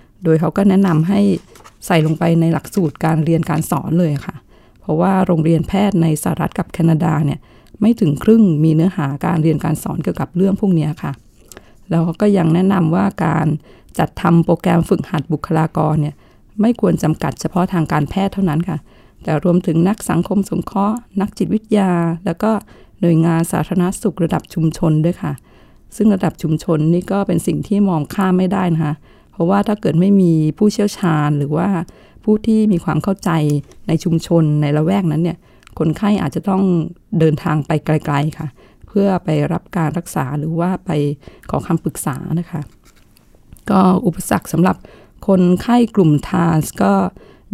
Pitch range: 155-195 Hz